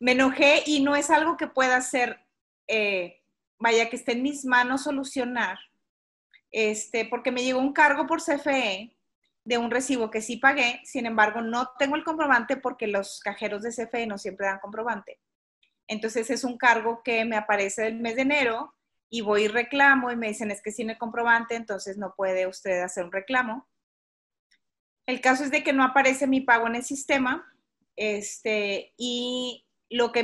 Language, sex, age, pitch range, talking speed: Spanish, female, 30-49, 205-250 Hz, 185 wpm